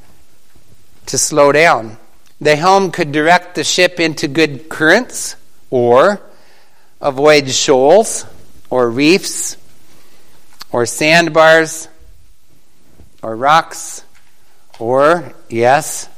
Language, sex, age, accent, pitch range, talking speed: English, male, 60-79, American, 130-165 Hz, 85 wpm